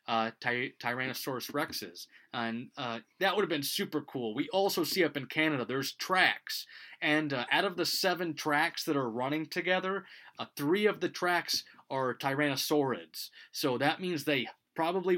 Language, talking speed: English, 165 wpm